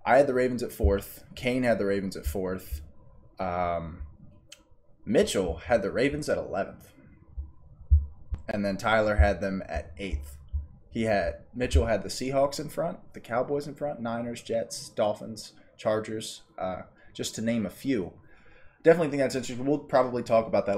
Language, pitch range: English, 95-115 Hz